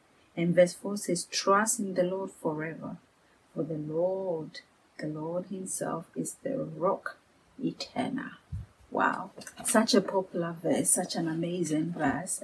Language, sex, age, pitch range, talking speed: English, female, 30-49, 170-205 Hz, 135 wpm